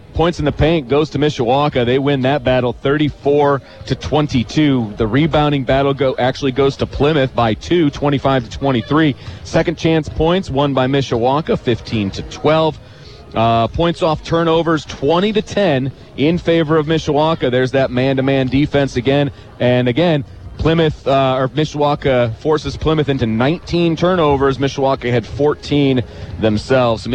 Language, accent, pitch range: English, American, 120-155 Hz